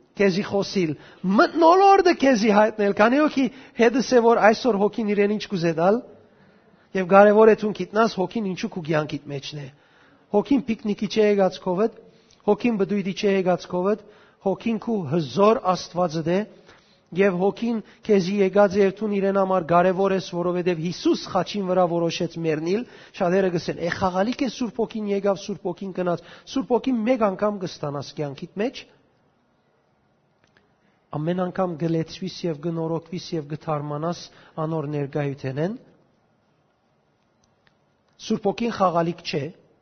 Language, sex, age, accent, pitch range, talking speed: English, male, 40-59, Turkish, 165-210 Hz, 90 wpm